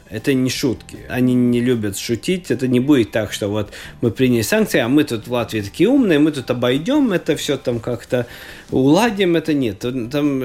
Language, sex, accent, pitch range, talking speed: Russian, male, native, 120-175 Hz, 195 wpm